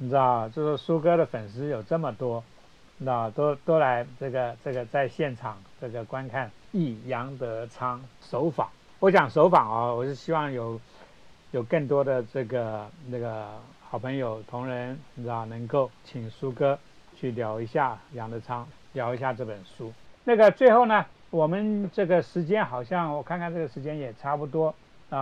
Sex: male